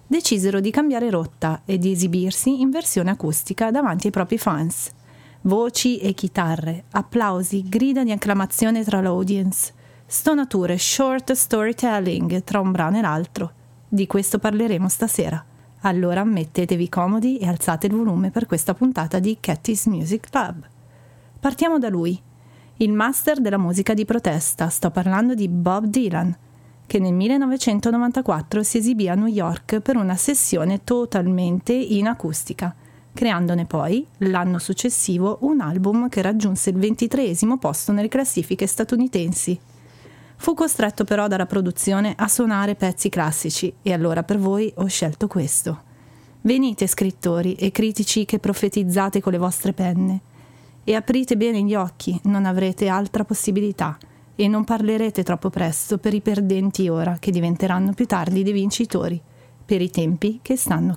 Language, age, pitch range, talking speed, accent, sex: Italian, 30-49, 175-220 Hz, 145 wpm, native, female